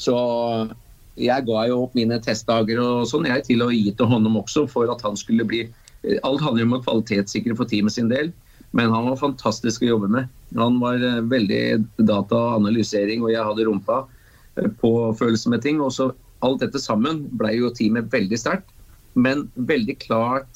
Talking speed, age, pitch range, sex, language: 180 wpm, 30-49, 110-130 Hz, male, Swedish